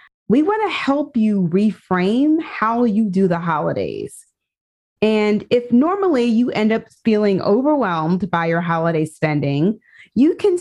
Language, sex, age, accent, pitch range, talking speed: English, female, 30-49, American, 185-265 Hz, 135 wpm